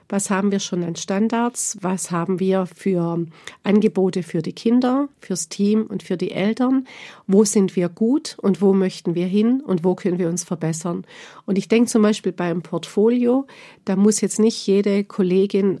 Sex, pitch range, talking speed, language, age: female, 180-205 Hz, 180 wpm, German, 50-69